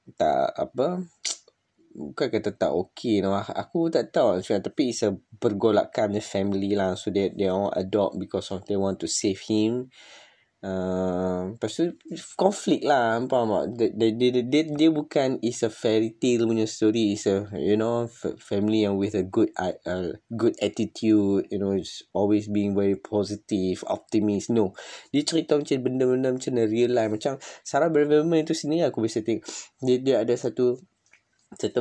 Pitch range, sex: 100-120 Hz, male